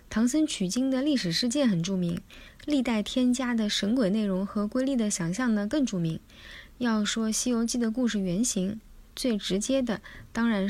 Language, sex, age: Chinese, female, 20-39